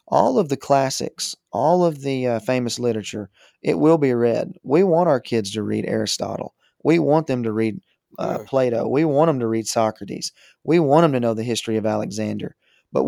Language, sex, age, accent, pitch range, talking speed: English, male, 30-49, American, 110-130 Hz, 200 wpm